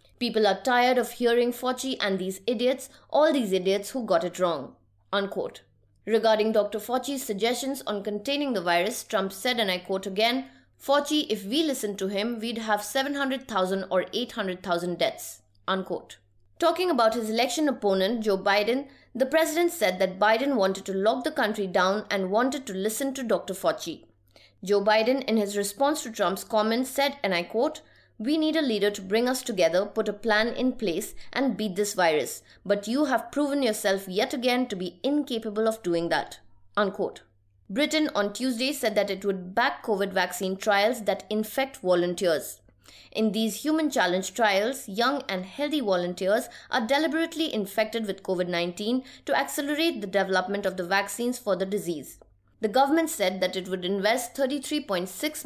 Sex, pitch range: female, 190-255 Hz